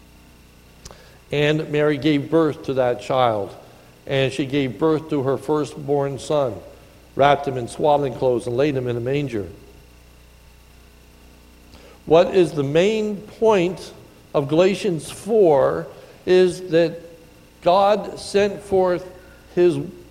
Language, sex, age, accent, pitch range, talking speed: English, male, 60-79, American, 135-180 Hz, 120 wpm